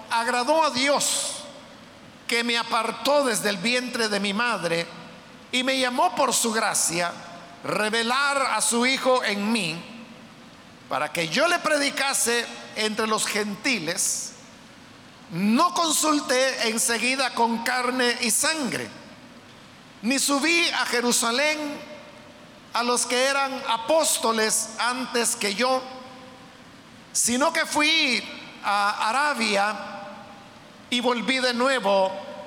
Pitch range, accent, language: 225-275 Hz, Mexican, Spanish